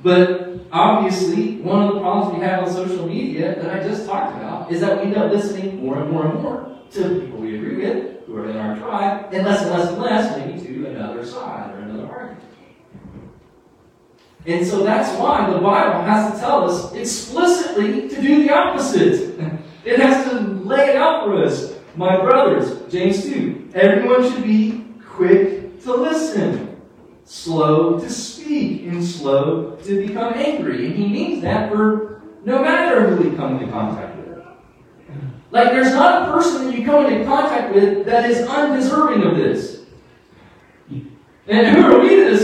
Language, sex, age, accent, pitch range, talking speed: English, male, 40-59, American, 185-255 Hz, 180 wpm